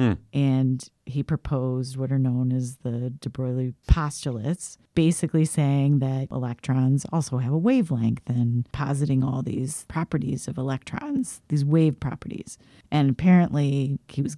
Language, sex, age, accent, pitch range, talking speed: English, female, 30-49, American, 130-160 Hz, 140 wpm